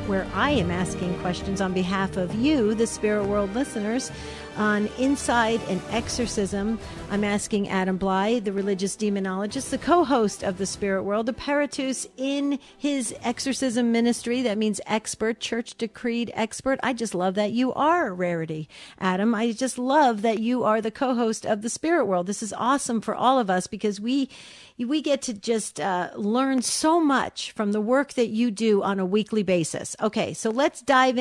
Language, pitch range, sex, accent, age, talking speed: English, 190-240 Hz, female, American, 50-69, 175 wpm